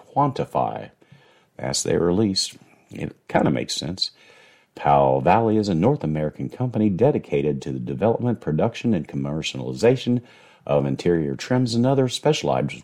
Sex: male